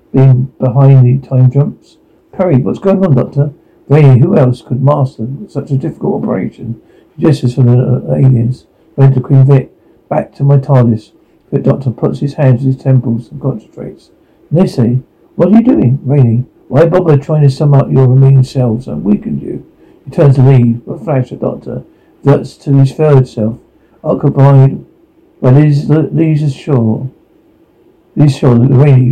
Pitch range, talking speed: 130-155 Hz, 175 wpm